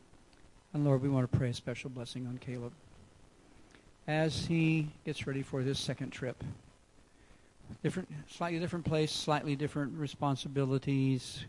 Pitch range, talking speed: 125-145 Hz, 135 wpm